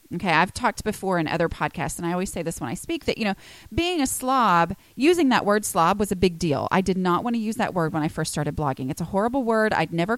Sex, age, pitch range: female, 30-49, 170-235 Hz